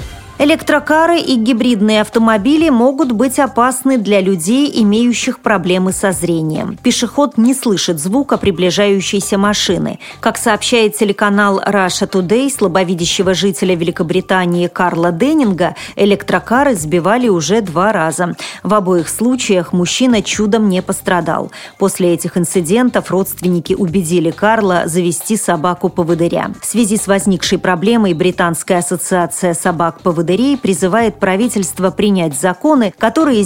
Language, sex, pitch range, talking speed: Russian, female, 180-230 Hz, 110 wpm